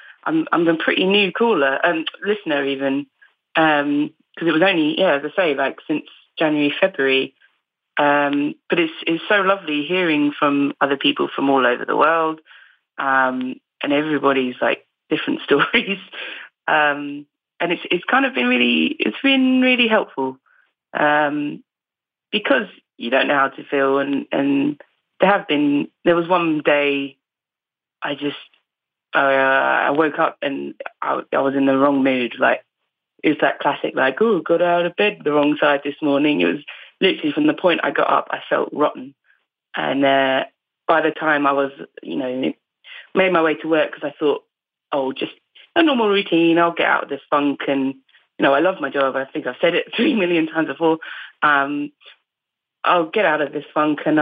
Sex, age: female, 20-39